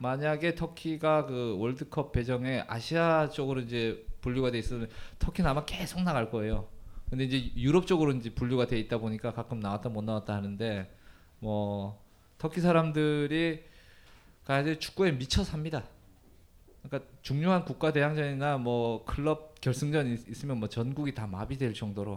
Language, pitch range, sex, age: Korean, 115-155 Hz, male, 20-39